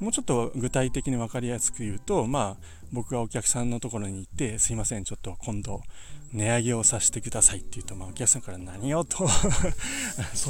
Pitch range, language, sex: 105-150 Hz, Japanese, male